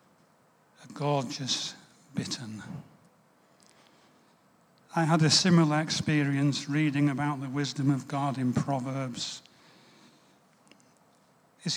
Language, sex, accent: English, male, British